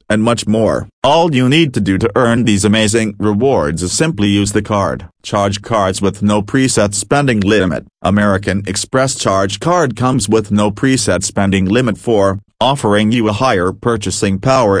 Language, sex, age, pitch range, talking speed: English, male, 40-59, 100-120 Hz, 170 wpm